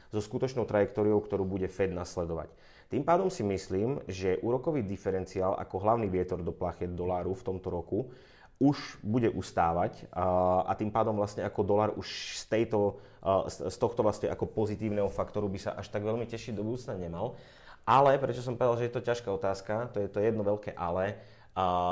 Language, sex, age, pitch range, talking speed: Czech, male, 30-49, 95-110 Hz, 175 wpm